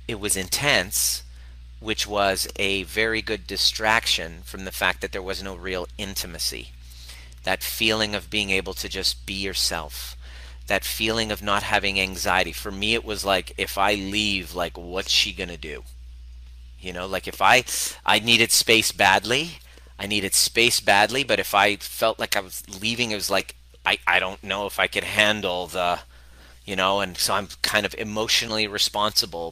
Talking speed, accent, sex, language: 180 wpm, American, male, English